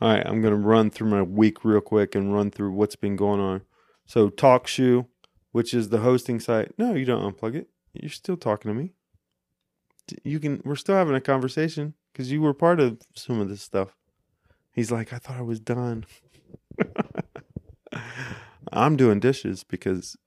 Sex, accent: male, American